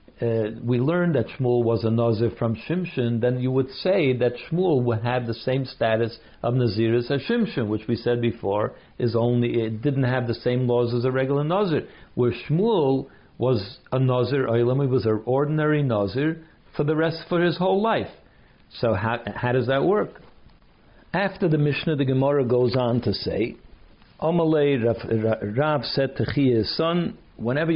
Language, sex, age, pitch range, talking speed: English, male, 60-79, 115-140 Hz, 180 wpm